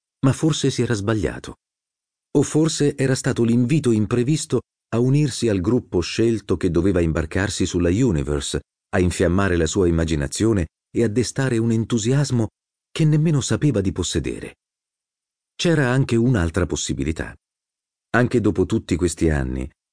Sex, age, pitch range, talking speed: male, 40-59, 80-115 Hz, 135 wpm